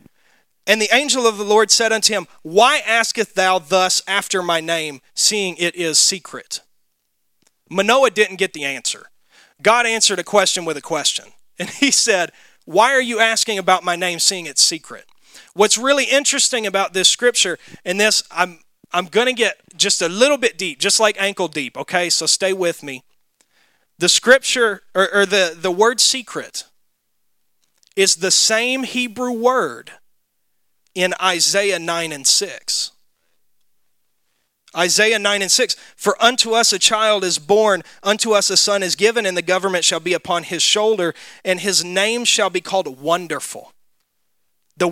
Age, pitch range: 30-49, 175-220 Hz